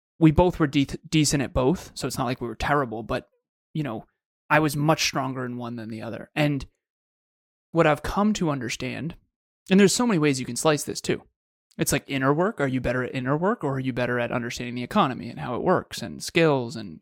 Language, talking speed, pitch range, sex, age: English, 235 wpm, 130-160 Hz, male, 20-39